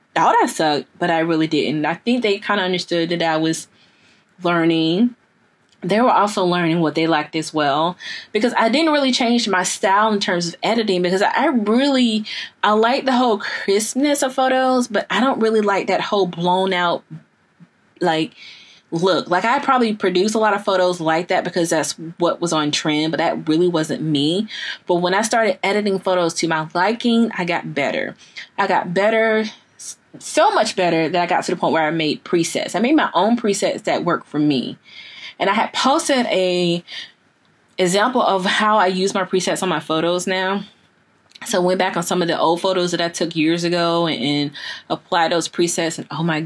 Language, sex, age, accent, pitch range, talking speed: English, female, 20-39, American, 170-215 Hz, 200 wpm